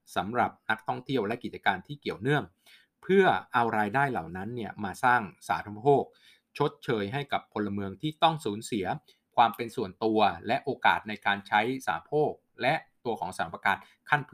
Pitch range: 100-135 Hz